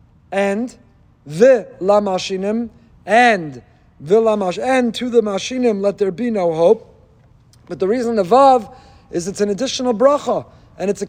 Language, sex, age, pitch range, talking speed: English, male, 50-69, 200-255 Hz, 150 wpm